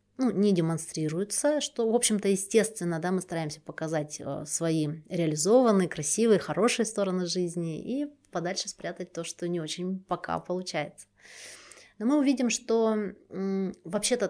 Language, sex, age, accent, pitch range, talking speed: Russian, female, 30-49, native, 175-220 Hz, 130 wpm